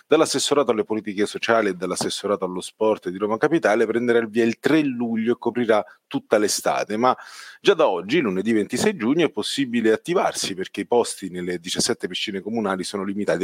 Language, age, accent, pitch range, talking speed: Italian, 30-49, native, 105-135 Hz, 180 wpm